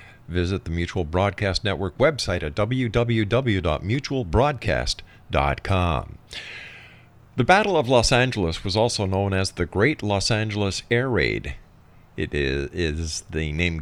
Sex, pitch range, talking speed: male, 90-120 Hz, 115 wpm